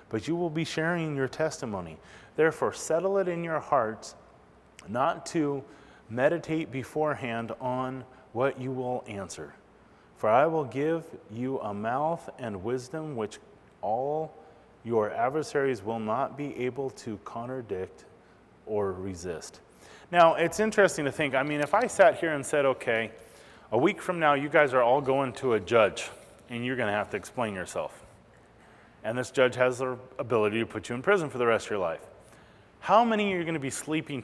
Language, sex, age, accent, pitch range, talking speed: English, male, 30-49, American, 125-165 Hz, 180 wpm